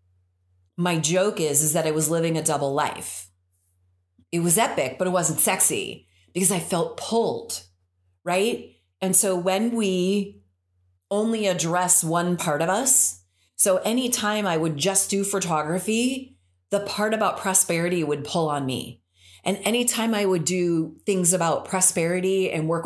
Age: 30-49